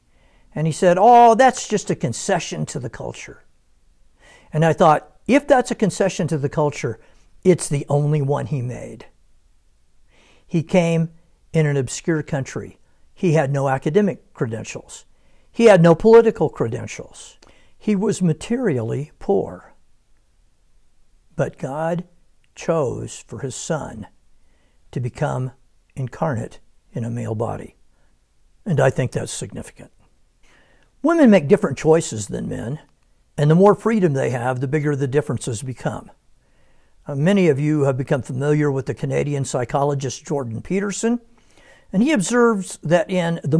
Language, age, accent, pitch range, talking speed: English, 60-79, American, 125-180 Hz, 140 wpm